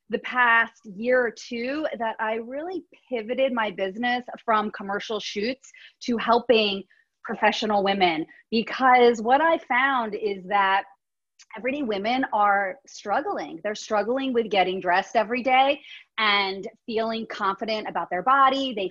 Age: 30-49